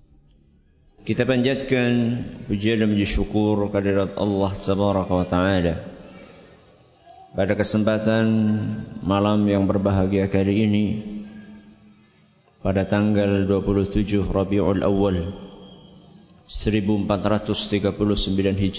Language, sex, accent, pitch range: English, male, Indonesian, 100-110 Hz